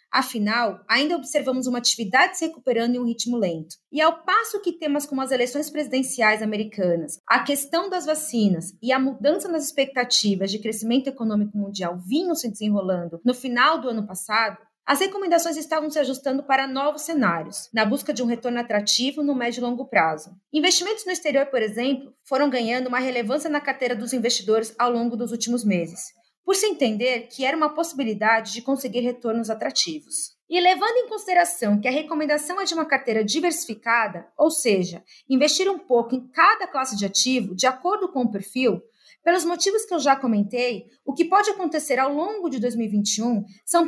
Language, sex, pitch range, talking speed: English, female, 225-310 Hz, 180 wpm